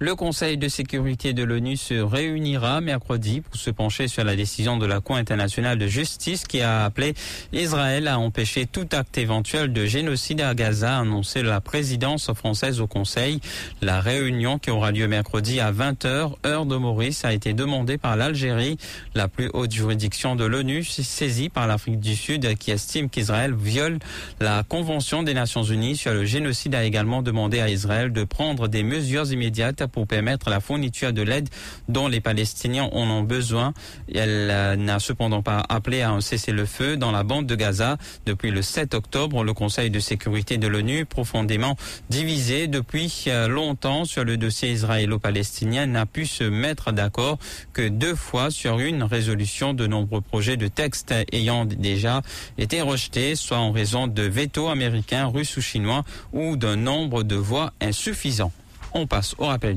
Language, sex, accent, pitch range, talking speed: English, male, French, 110-140 Hz, 175 wpm